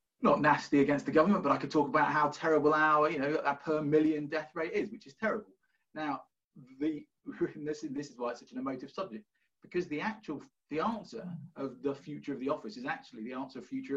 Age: 30-49